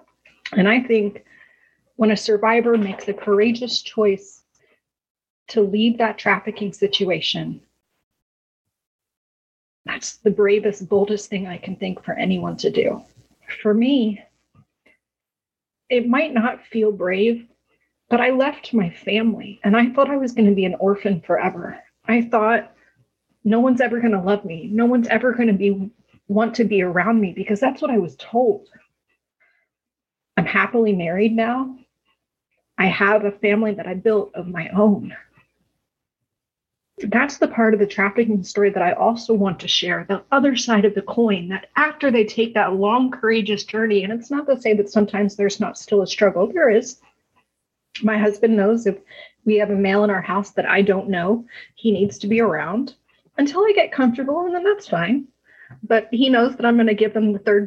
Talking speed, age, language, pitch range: 175 wpm, 30-49, English, 200-235 Hz